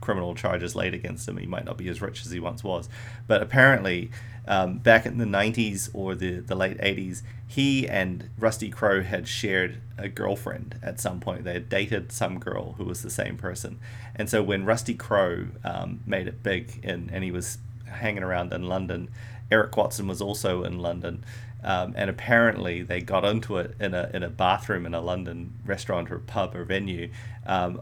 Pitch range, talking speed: 95-115 Hz, 200 wpm